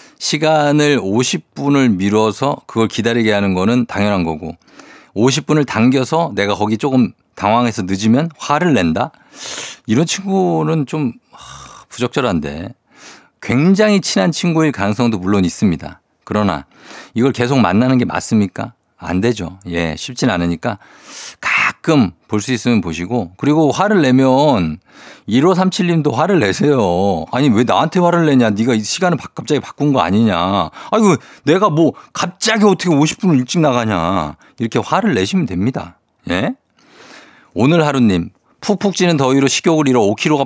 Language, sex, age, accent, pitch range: Korean, male, 50-69, native, 95-150 Hz